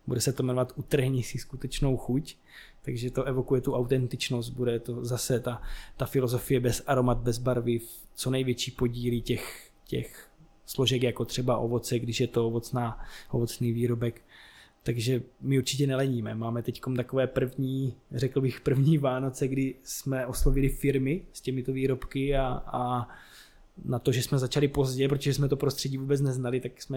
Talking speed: 165 wpm